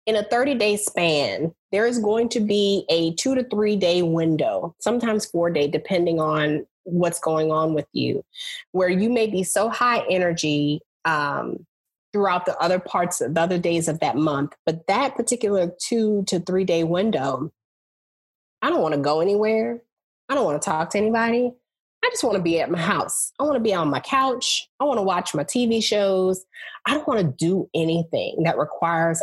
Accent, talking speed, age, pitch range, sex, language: American, 195 wpm, 20-39, 165-220 Hz, female, English